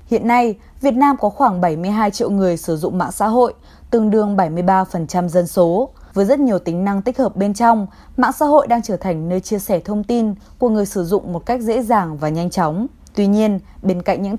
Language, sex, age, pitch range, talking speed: Vietnamese, female, 20-39, 185-240 Hz, 230 wpm